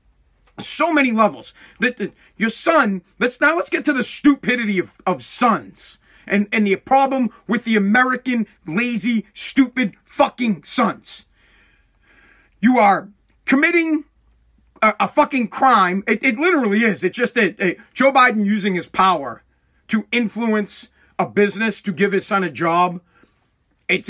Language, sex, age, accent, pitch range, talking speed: English, male, 40-59, American, 200-255 Hz, 145 wpm